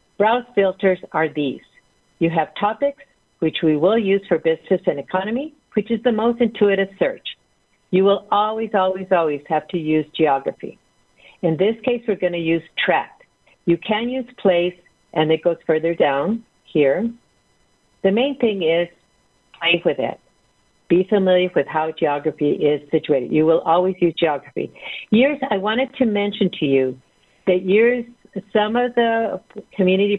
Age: 60-79